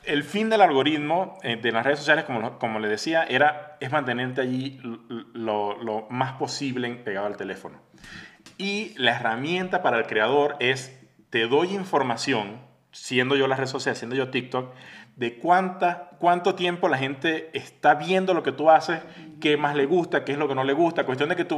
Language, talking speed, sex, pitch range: Spanish, 190 wpm, male, 130-170 Hz